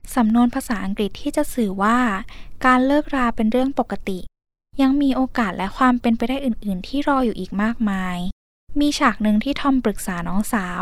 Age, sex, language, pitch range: 10-29, female, Thai, 205-275 Hz